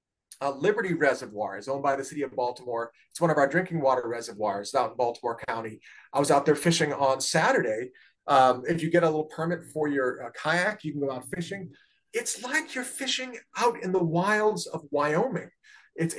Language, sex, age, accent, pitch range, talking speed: English, male, 40-59, American, 155-260 Hz, 205 wpm